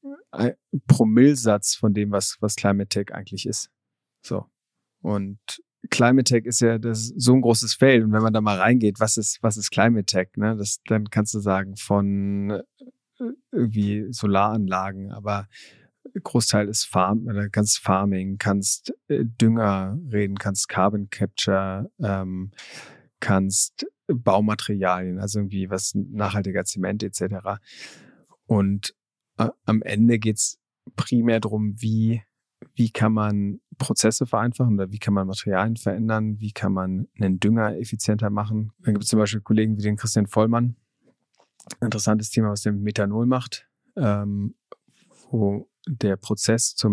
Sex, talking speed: male, 140 wpm